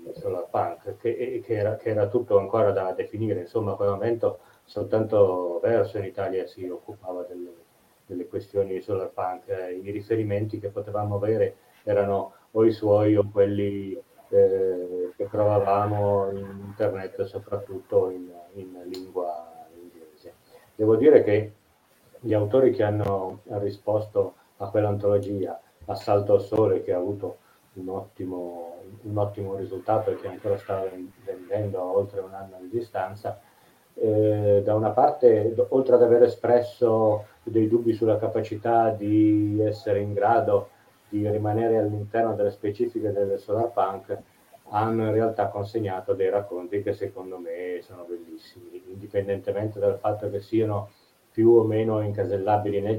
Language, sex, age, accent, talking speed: Italian, male, 30-49, native, 140 wpm